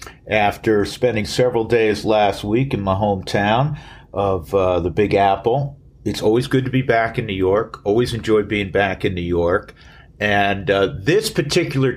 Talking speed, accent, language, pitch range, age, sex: 170 wpm, American, English, 95-125 Hz, 50-69, male